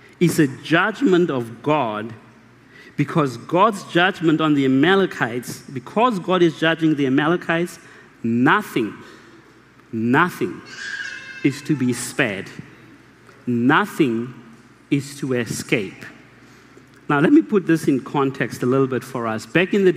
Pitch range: 135-180 Hz